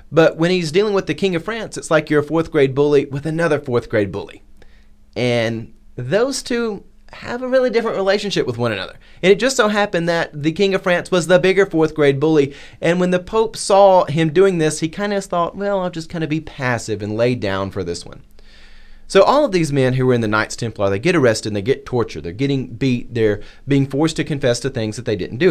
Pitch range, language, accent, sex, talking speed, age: 110-165 Hz, English, American, male, 245 wpm, 30-49